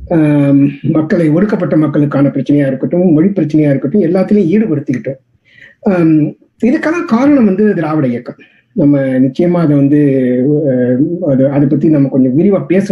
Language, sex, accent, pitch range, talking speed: Tamil, male, native, 155-220 Hz, 125 wpm